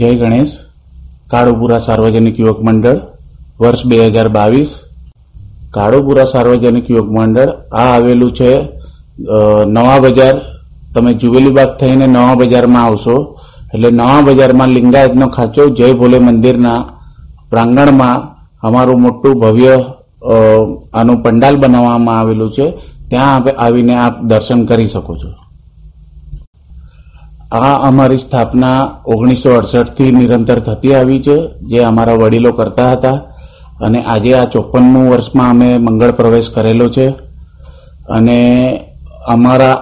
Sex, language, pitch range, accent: male, Gujarati, 110-130 Hz, native